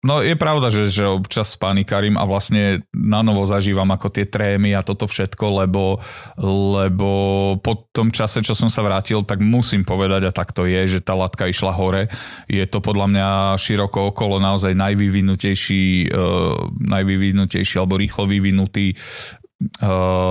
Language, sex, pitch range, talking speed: Slovak, male, 95-105 Hz, 155 wpm